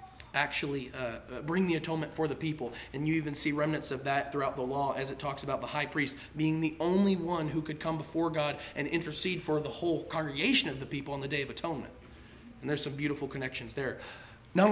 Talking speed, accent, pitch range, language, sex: 225 wpm, American, 145-190 Hz, English, male